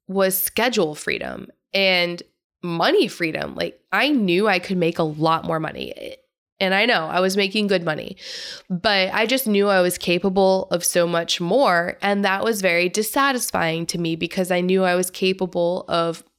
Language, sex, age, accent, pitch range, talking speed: English, female, 20-39, American, 170-215 Hz, 180 wpm